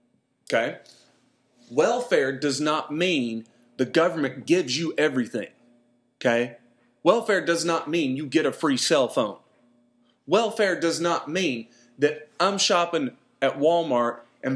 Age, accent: 30-49, American